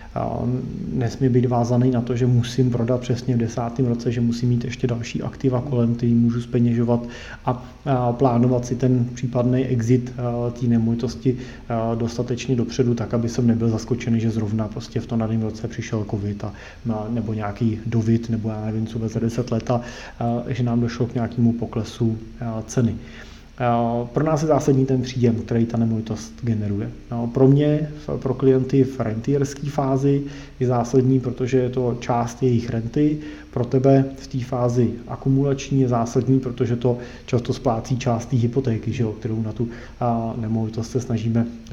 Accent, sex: native, male